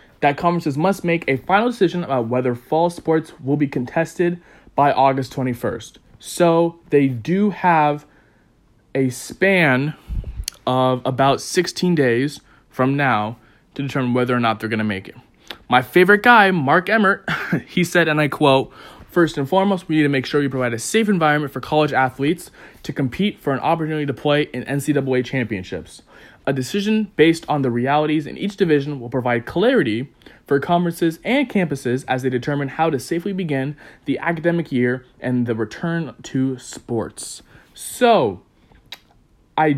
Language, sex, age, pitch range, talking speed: English, male, 20-39, 125-170 Hz, 165 wpm